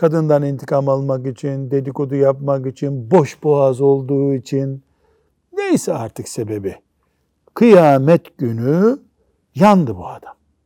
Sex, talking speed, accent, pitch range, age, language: male, 100 wpm, native, 130-165 Hz, 60-79, Turkish